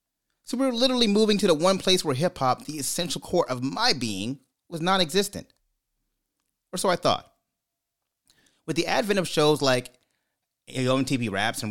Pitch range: 110-145 Hz